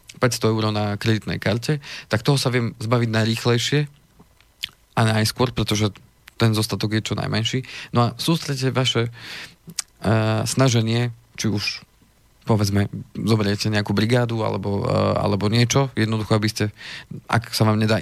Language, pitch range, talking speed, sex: Slovak, 110-125 Hz, 140 wpm, male